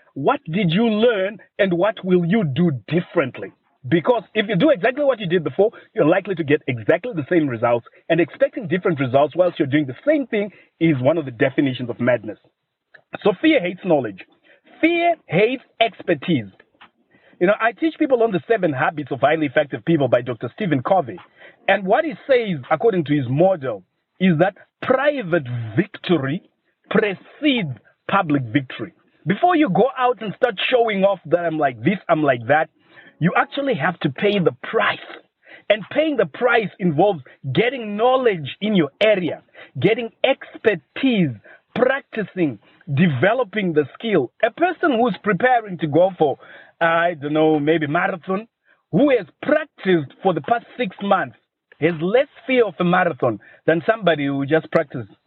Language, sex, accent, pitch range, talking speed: English, male, South African, 160-230 Hz, 165 wpm